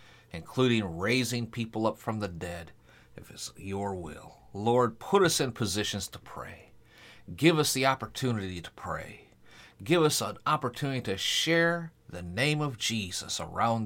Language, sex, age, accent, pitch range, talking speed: English, male, 40-59, American, 100-130 Hz, 150 wpm